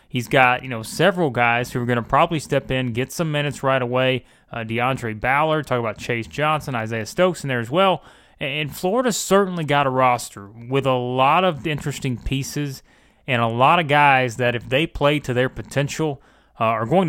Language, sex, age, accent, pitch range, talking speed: English, male, 30-49, American, 125-150 Hz, 205 wpm